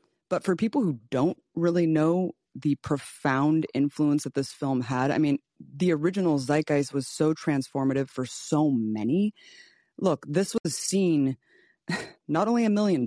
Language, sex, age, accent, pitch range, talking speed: English, female, 20-39, American, 130-165 Hz, 150 wpm